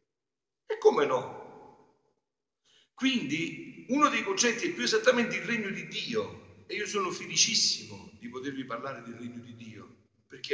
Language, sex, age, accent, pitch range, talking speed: Italian, male, 50-69, native, 110-160 Hz, 140 wpm